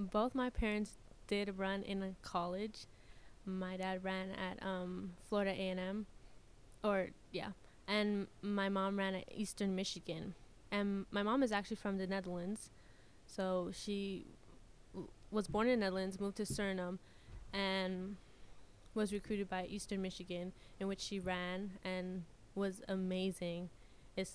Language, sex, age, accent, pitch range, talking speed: English, female, 10-29, American, 190-210 Hz, 135 wpm